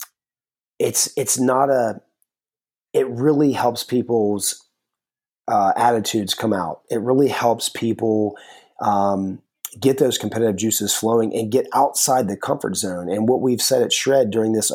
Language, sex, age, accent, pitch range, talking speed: English, male, 30-49, American, 100-115 Hz, 145 wpm